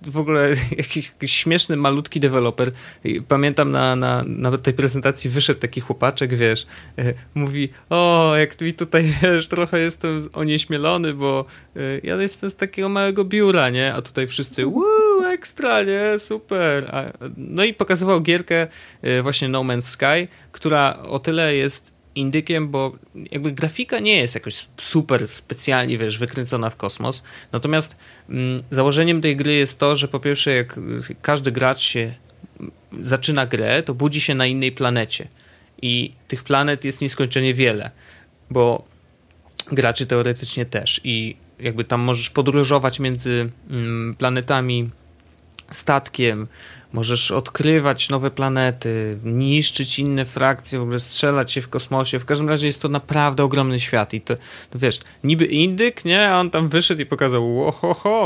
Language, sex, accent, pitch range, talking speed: Polish, male, native, 125-155 Hz, 140 wpm